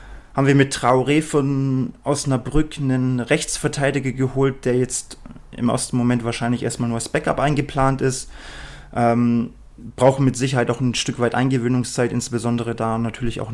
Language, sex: German, male